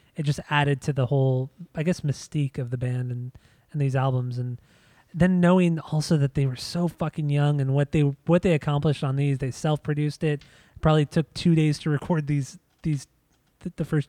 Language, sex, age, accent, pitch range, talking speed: English, male, 20-39, American, 135-160 Hz, 205 wpm